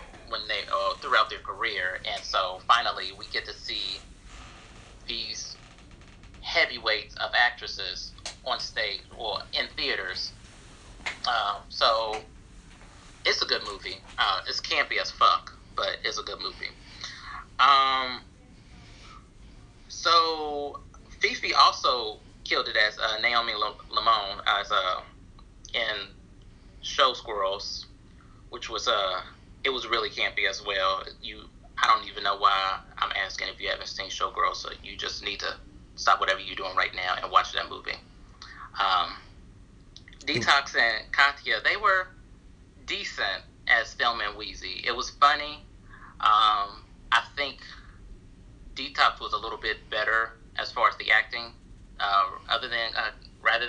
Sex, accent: male, American